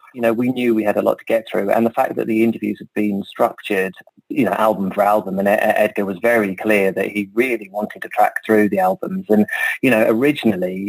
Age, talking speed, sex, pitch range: 30-49, 235 wpm, male, 105-115 Hz